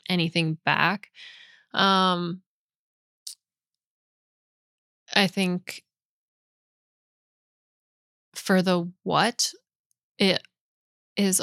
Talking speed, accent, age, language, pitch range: 55 wpm, American, 20-39, English, 175-205 Hz